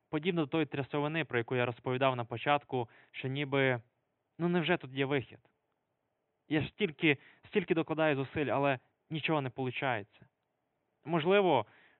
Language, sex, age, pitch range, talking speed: Ukrainian, male, 20-39, 120-140 Hz, 140 wpm